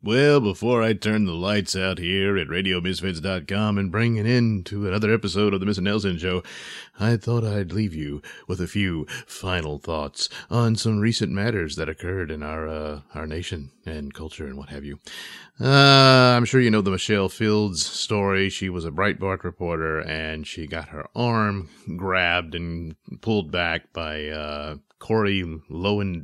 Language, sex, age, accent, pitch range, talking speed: English, male, 30-49, American, 80-105 Hz, 170 wpm